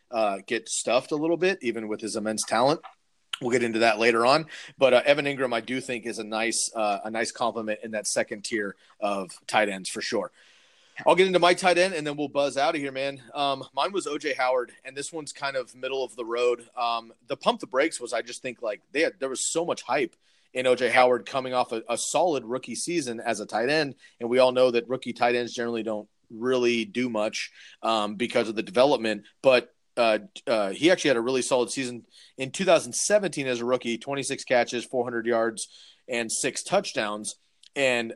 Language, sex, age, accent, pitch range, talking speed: English, male, 30-49, American, 115-140 Hz, 220 wpm